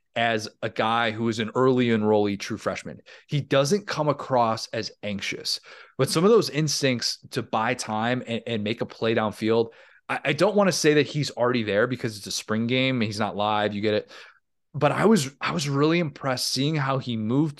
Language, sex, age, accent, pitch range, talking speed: English, male, 30-49, American, 115-145 Hz, 215 wpm